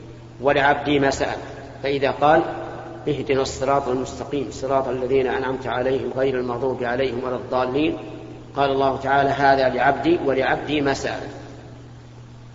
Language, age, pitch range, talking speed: Arabic, 50-69, 120-145 Hz, 120 wpm